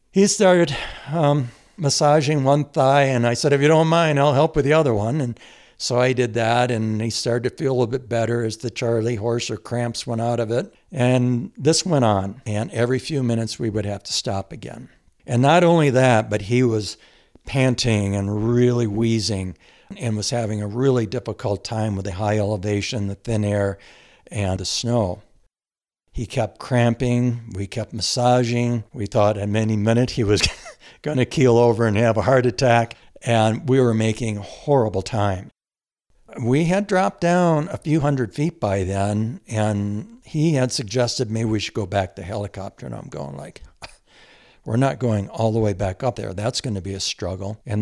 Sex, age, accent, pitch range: male, 60-79, American, 105-130 Hz